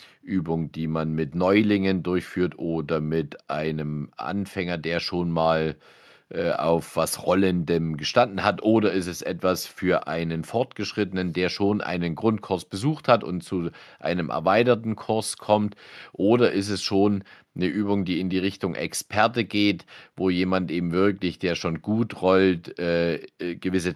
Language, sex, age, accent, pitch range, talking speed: German, male, 50-69, German, 85-105 Hz, 150 wpm